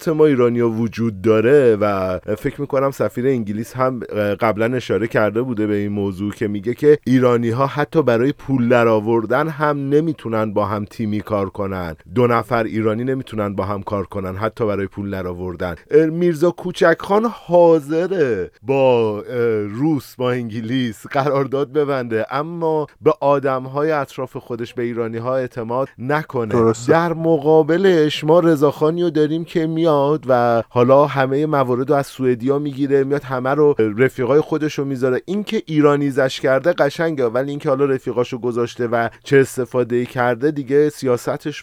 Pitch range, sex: 115-150 Hz, male